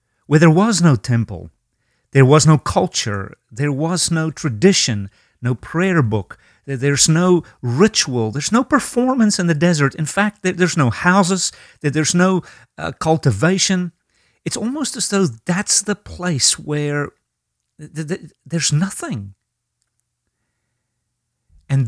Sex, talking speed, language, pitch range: male, 120 wpm, English, 115-170 Hz